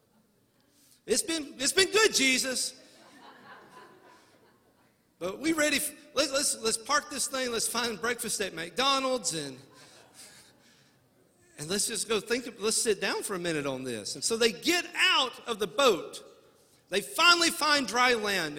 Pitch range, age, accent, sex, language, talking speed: 195-300 Hz, 50-69, American, male, English, 160 wpm